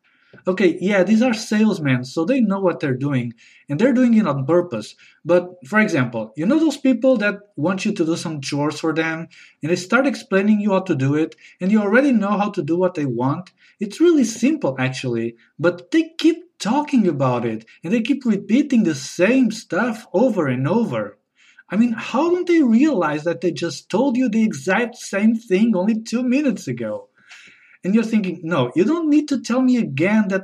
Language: English